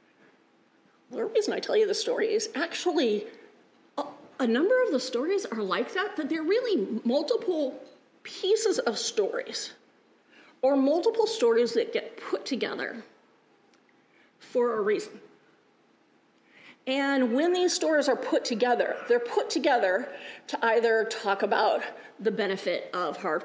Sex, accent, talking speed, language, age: female, American, 135 wpm, English, 40-59